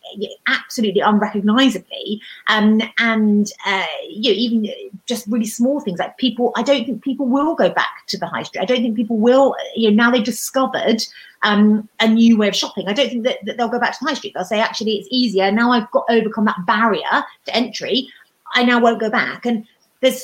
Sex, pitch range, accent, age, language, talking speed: female, 195-230 Hz, British, 30-49, English, 210 wpm